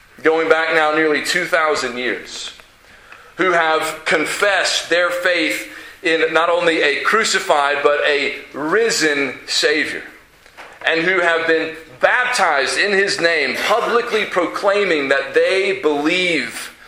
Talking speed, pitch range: 115 wpm, 155-225 Hz